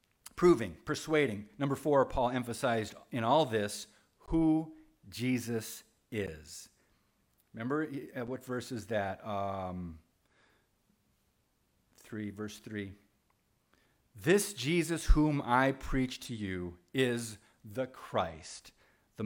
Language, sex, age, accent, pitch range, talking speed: English, male, 50-69, American, 115-150 Hz, 100 wpm